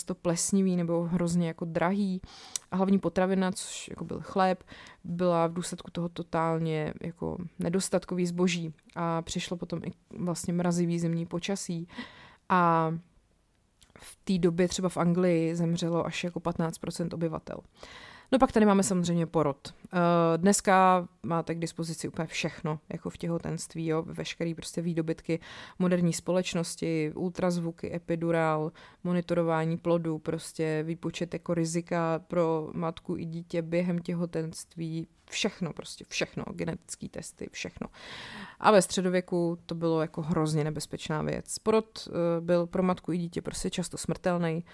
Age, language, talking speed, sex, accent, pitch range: 20-39, Czech, 135 wpm, female, native, 165-180 Hz